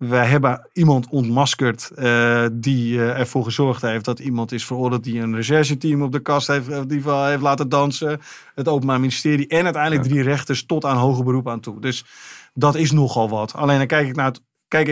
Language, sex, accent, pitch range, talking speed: Dutch, male, Dutch, 120-145 Hz, 215 wpm